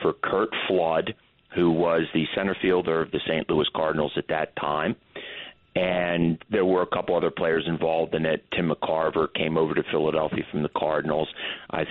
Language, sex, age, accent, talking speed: English, male, 40-59, American, 180 wpm